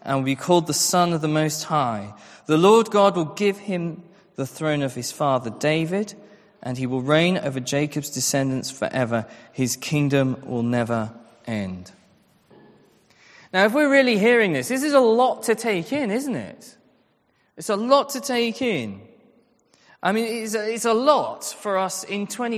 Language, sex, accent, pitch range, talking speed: English, male, British, 145-225 Hz, 170 wpm